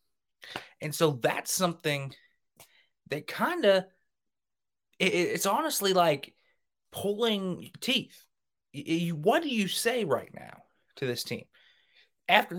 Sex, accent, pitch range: male, American, 140-195 Hz